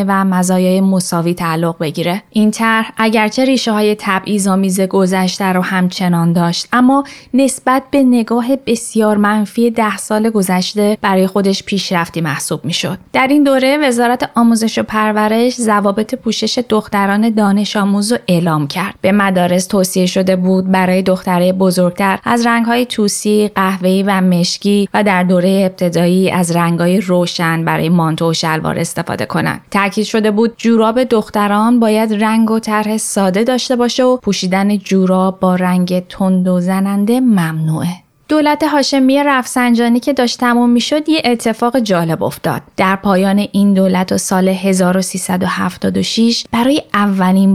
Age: 20-39